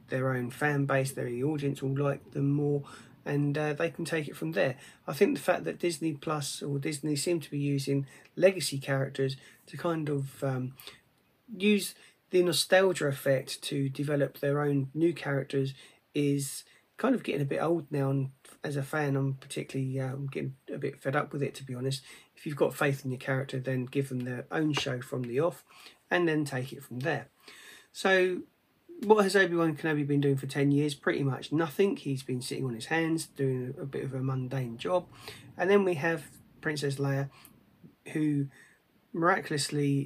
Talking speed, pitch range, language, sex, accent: 190 wpm, 135-155 Hz, English, male, British